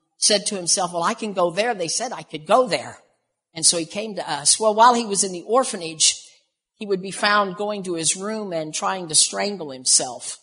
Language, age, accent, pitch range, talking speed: English, 50-69, American, 160-205 Hz, 230 wpm